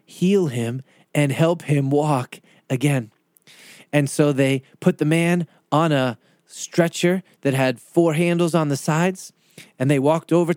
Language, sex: English, male